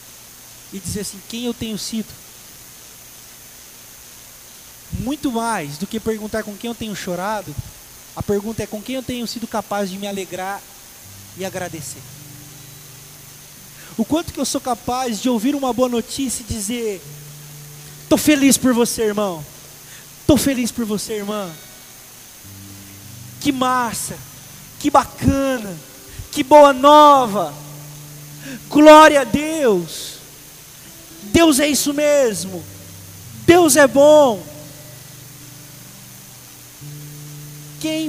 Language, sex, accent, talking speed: Portuguese, male, Brazilian, 115 wpm